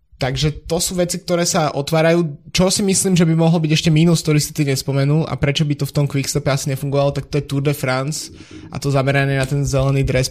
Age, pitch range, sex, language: 20-39, 130-145 Hz, male, Slovak